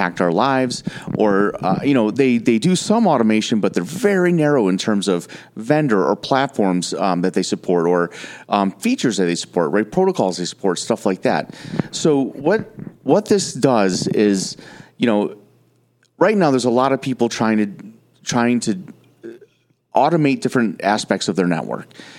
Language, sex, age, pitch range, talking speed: English, male, 30-49, 110-165 Hz, 170 wpm